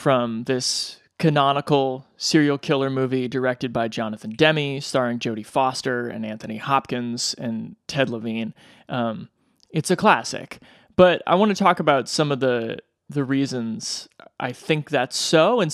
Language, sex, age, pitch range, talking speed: English, male, 30-49, 140-190 Hz, 150 wpm